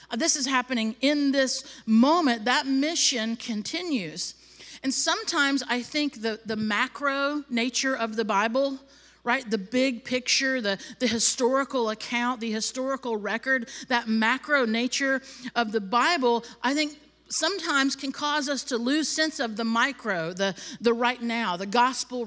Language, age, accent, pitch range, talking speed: English, 50-69, American, 215-270 Hz, 150 wpm